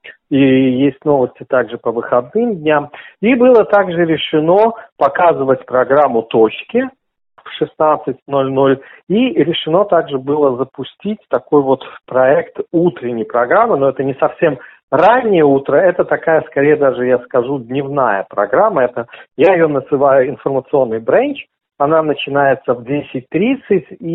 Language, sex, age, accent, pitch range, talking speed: Russian, male, 40-59, native, 130-170 Hz, 120 wpm